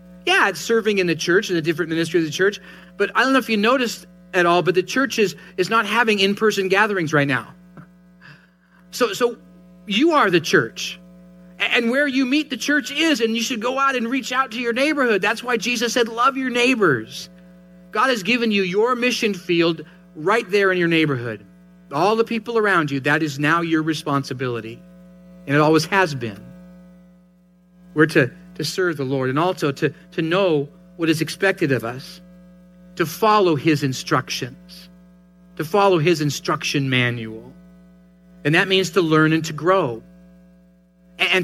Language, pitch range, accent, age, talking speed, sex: English, 165-205 Hz, American, 40-59, 180 wpm, male